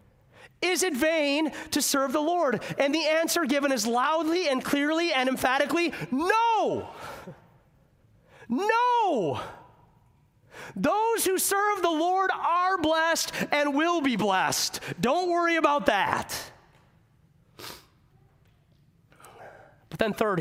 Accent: American